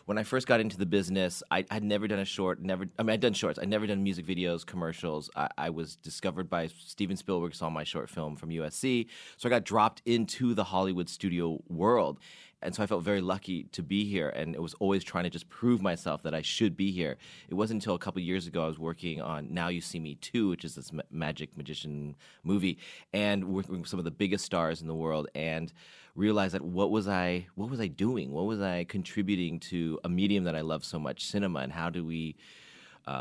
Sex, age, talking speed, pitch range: male, 30-49, 235 wpm, 80-100 Hz